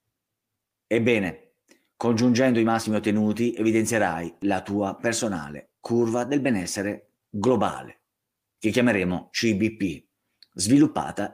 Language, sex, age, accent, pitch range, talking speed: Italian, male, 30-49, native, 85-110 Hz, 90 wpm